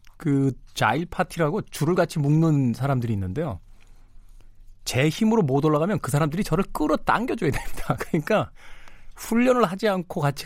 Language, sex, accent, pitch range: Korean, male, native, 100-160 Hz